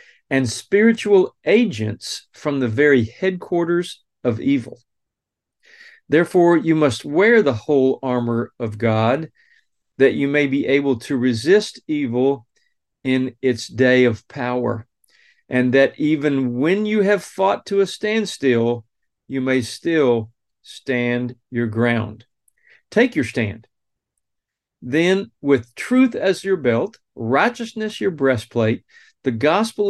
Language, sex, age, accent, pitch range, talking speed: English, male, 40-59, American, 120-185 Hz, 120 wpm